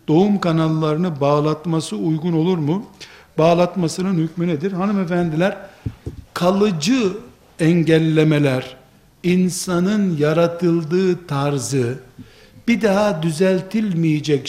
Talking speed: 75 wpm